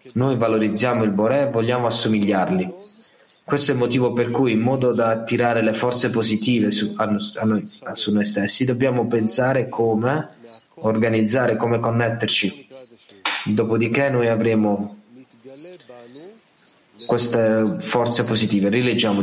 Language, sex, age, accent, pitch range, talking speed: Italian, male, 30-49, native, 110-125 Hz, 120 wpm